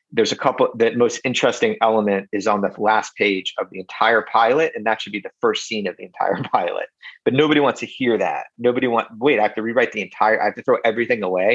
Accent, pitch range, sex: American, 100-130 Hz, male